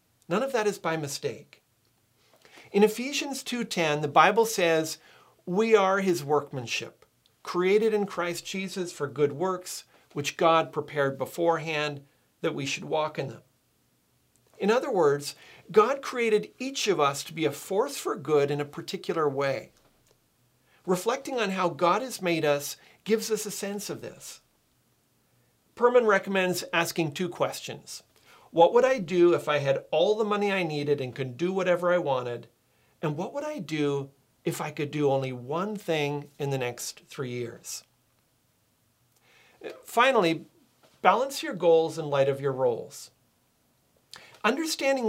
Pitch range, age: 145-205 Hz, 50-69